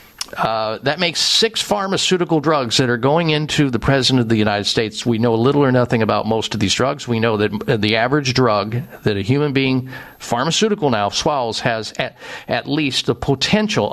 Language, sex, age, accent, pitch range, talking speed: English, male, 50-69, American, 125-175 Hz, 195 wpm